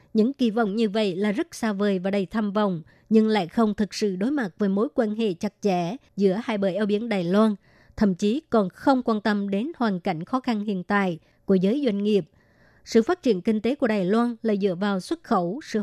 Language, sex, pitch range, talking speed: Vietnamese, male, 200-240 Hz, 245 wpm